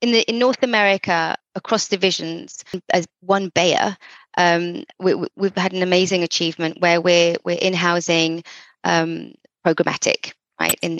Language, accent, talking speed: English, British, 135 wpm